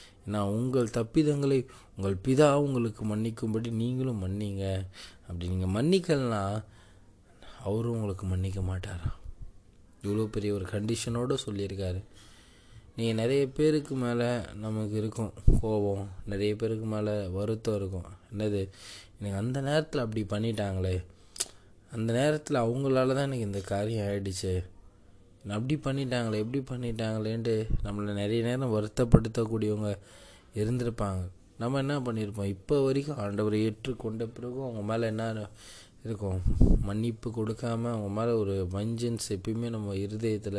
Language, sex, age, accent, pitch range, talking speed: Tamil, male, 20-39, native, 100-115 Hz, 115 wpm